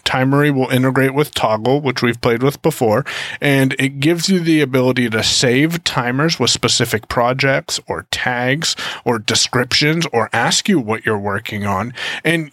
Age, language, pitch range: 30-49, English, 120-150 Hz